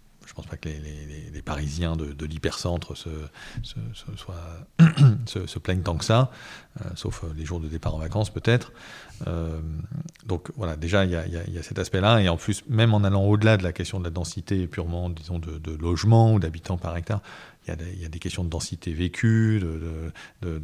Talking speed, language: 220 wpm, English